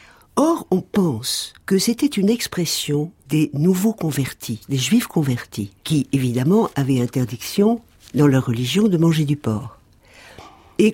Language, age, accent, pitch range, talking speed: French, 60-79, French, 130-190 Hz, 135 wpm